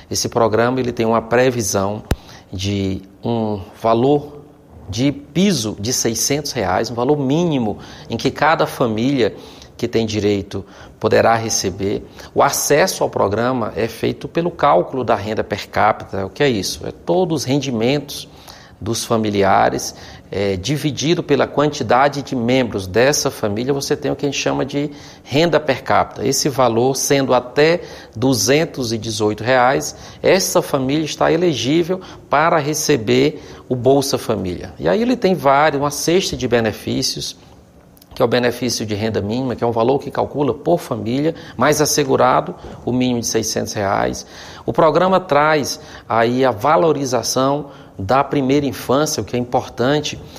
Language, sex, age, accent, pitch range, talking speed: Portuguese, male, 40-59, Brazilian, 110-145 Hz, 150 wpm